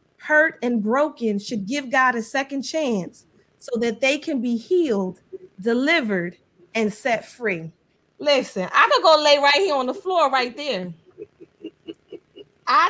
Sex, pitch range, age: female, 225-295 Hz, 20-39